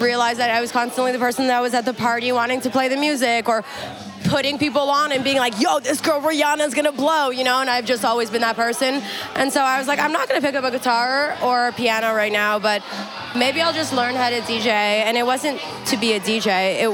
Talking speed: 265 wpm